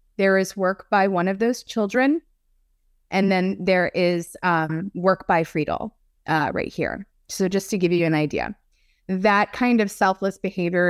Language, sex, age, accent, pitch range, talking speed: English, female, 20-39, American, 175-240 Hz, 170 wpm